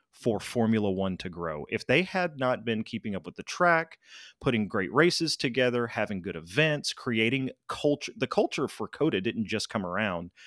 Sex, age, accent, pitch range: male, 30-49, American, 100-125 Hz